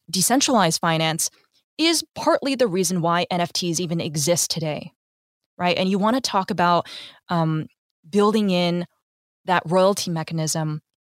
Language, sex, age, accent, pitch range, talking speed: English, female, 20-39, American, 165-215 Hz, 130 wpm